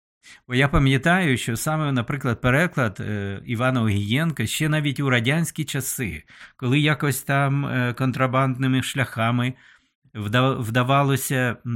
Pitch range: 110-135 Hz